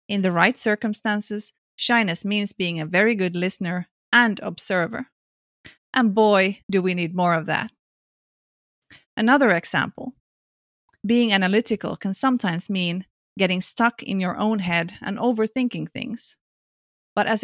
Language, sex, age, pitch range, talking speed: Finnish, female, 30-49, 185-235 Hz, 135 wpm